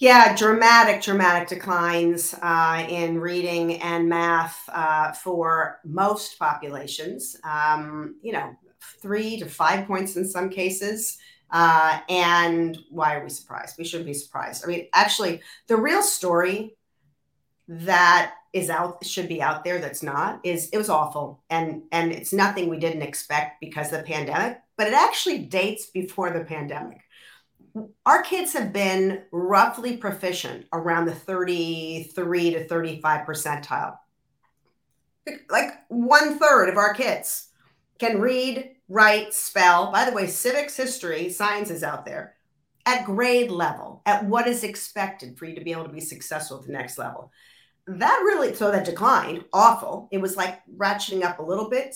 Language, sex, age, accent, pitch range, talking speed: English, female, 40-59, American, 165-210 Hz, 155 wpm